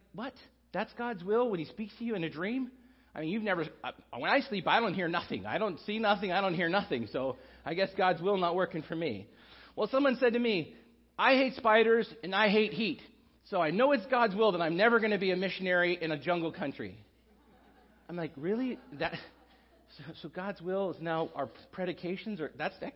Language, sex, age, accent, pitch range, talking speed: English, male, 40-59, American, 170-220 Hz, 225 wpm